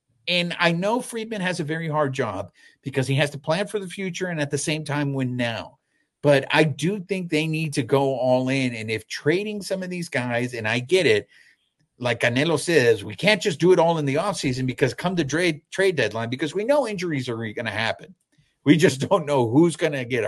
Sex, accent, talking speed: male, American, 235 wpm